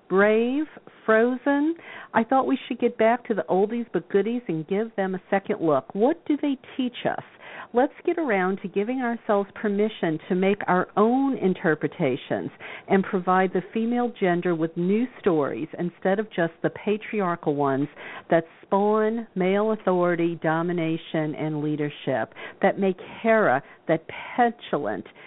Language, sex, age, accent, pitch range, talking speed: English, female, 50-69, American, 165-235 Hz, 145 wpm